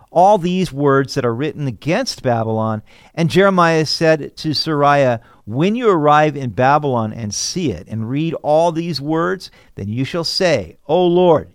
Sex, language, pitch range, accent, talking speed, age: male, English, 115-165 Hz, American, 165 wpm, 50-69